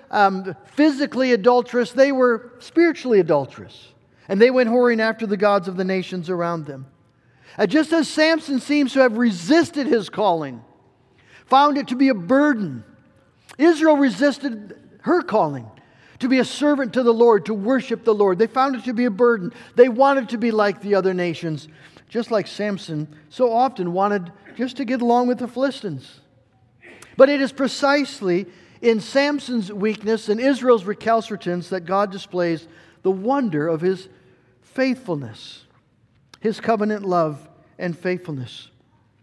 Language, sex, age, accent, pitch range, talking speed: English, male, 50-69, American, 165-250 Hz, 155 wpm